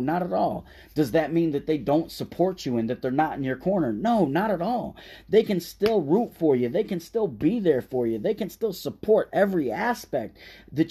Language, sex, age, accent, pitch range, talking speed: English, male, 30-49, American, 125-170 Hz, 230 wpm